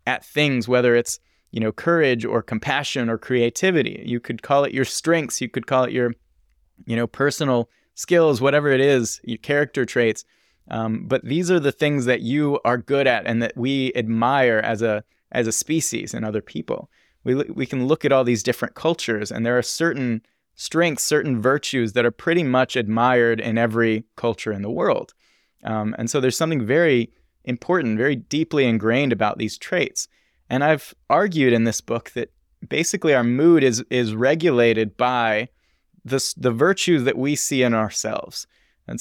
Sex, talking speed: male, 185 wpm